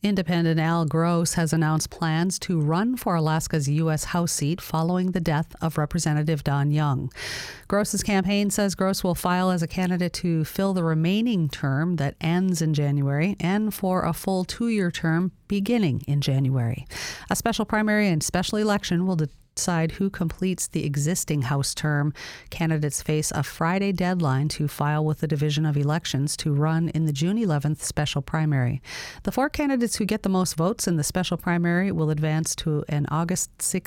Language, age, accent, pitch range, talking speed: English, 40-59, American, 150-185 Hz, 175 wpm